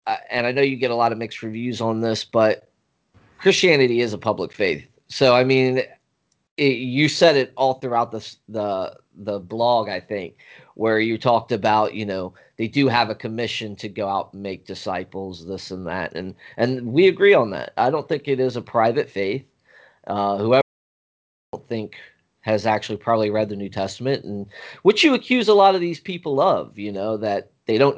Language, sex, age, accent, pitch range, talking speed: English, male, 30-49, American, 110-150 Hz, 200 wpm